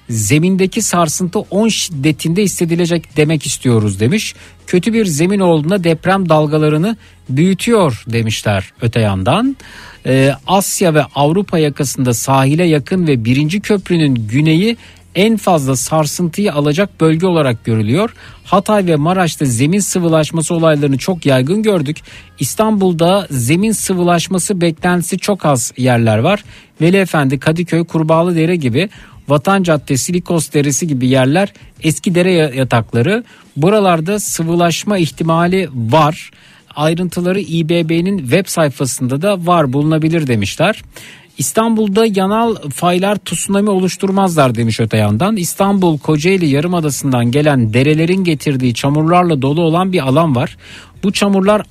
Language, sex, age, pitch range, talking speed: Turkish, male, 50-69, 145-185 Hz, 115 wpm